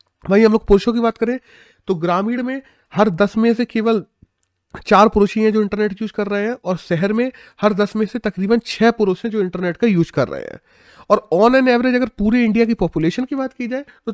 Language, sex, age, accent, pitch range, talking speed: Hindi, male, 30-49, native, 175-230 Hz, 240 wpm